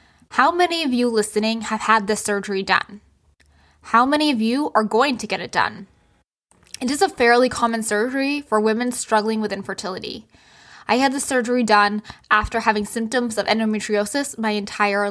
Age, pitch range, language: 10-29, 210-245 Hz, English